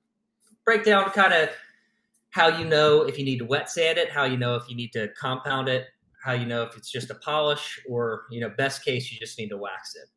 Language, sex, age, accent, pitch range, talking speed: English, male, 30-49, American, 120-185 Hz, 250 wpm